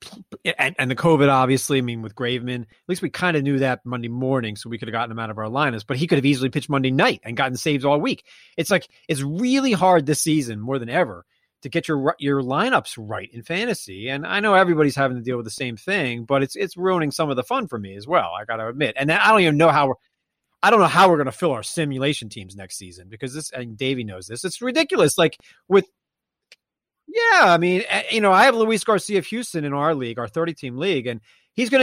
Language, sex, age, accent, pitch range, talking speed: English, male, 30-49, American, 135-205 Hz, 255 wpm